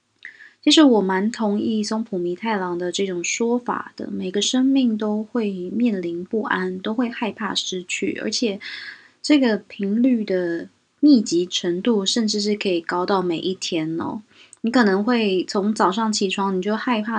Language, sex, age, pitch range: Chinese, female, 20-39, 185-230 Hz